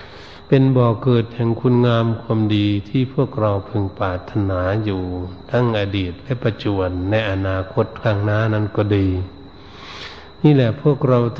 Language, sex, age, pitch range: Thai, male, 60-79, 95-120 Hz